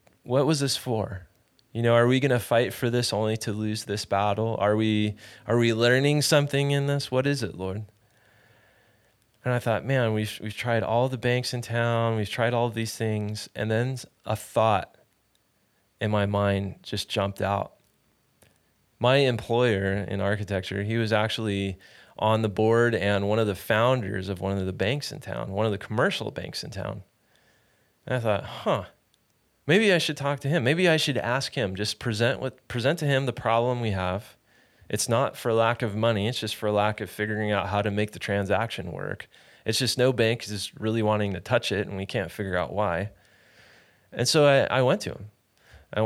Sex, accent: male, American